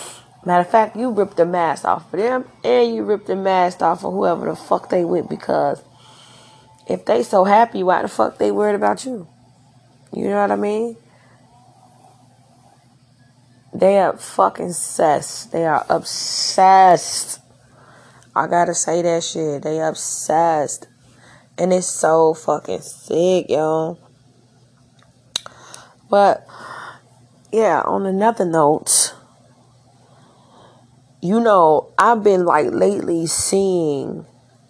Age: 20-39